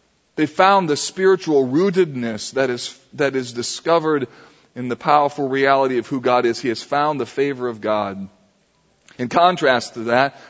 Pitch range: 140-185 Hz